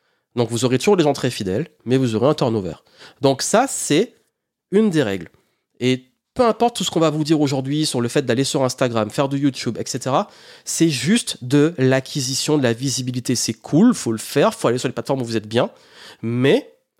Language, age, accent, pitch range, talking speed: French, 30-49, French, 120-155 Hz, 220 wpm